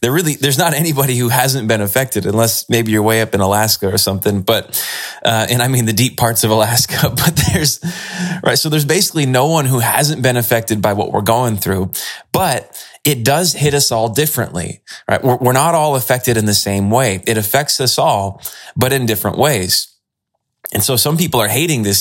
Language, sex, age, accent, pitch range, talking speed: English, male, 20-39, American, 105-130 Hz, 210 wpm